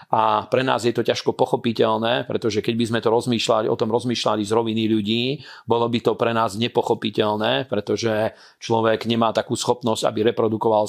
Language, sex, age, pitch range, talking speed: Slovak, male, 40-59, 110-120 Hz, 170 wpm